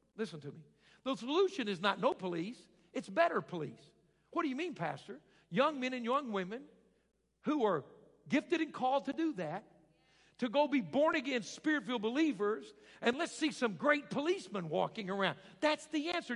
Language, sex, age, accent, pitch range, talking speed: English, male, 60-79, American, 240-305 Hz, 175 wpm